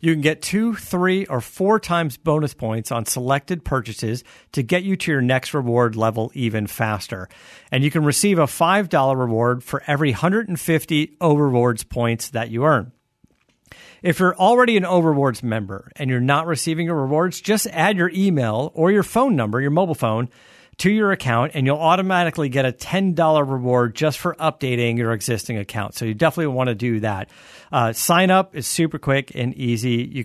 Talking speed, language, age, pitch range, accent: 185 wpm, English, 50-69, 115-160 Hz, American